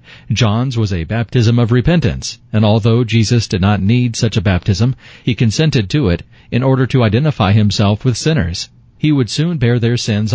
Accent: American